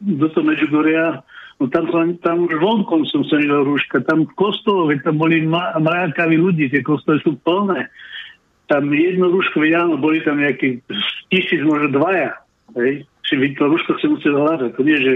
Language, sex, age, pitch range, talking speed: Slovak, male, 60-79, 140-180 Hz, 165 wpm